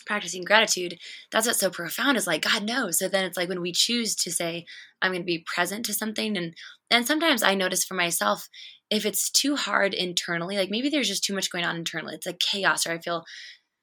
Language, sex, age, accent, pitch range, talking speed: English, female, 20-39, American, 175-220 Hz, 230 wpm